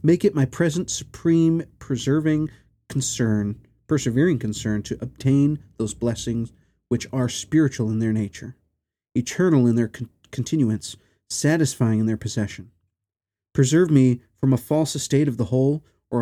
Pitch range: 110-140 Hz